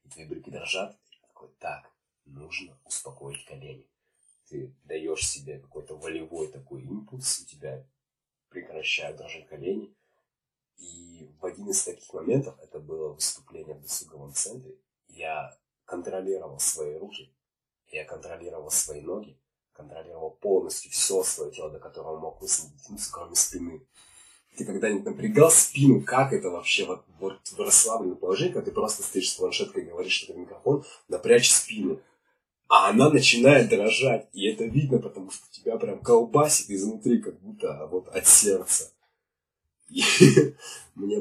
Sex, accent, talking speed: male, native, 140 wpm